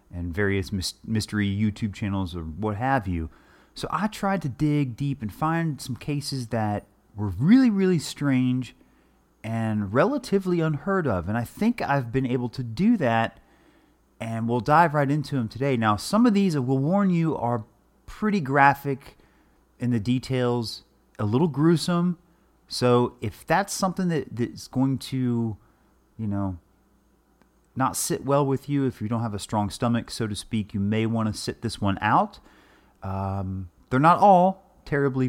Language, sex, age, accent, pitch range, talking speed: English, male, 30-49, American, 105-155 Hz, 165 wpm